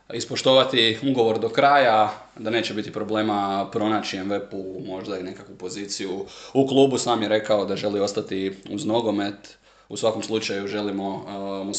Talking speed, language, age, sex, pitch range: 155 wpm, Croatian, 20-39, male, 100-115 Hz